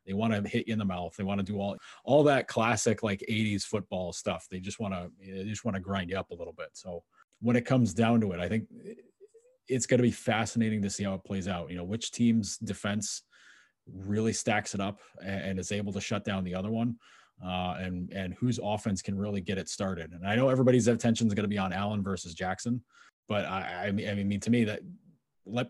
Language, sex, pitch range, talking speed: English, male, 100-120 Hz, 250 wpm